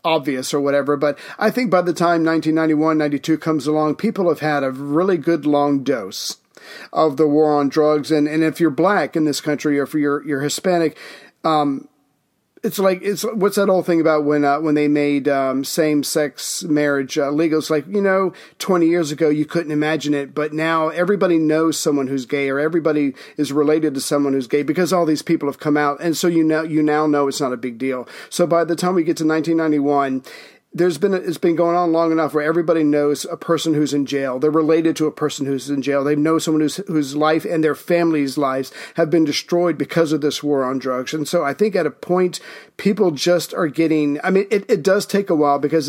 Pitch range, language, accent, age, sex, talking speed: 145-170 Hz, English, American, 50-69, male, 230 wpm